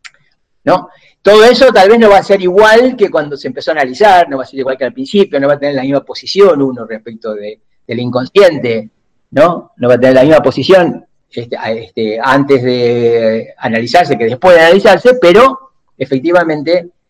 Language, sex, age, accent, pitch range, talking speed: Spanish, male, 40-59, Argentinian, 135-210 Hz, 195 wpm